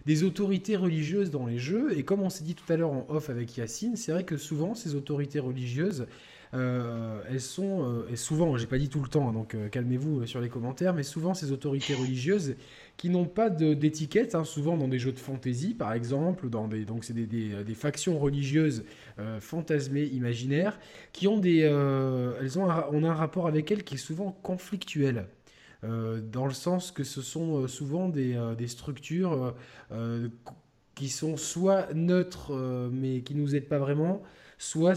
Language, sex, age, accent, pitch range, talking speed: French, male, 20-39, French, 125-155 Hz, 200 wpm